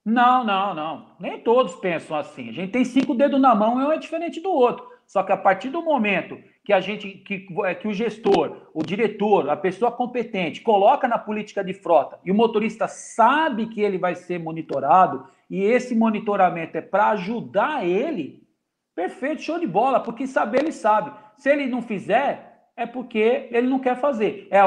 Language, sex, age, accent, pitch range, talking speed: Portuguese, male, 50-69, Brazilian, 190-245 Hz, 180 wpm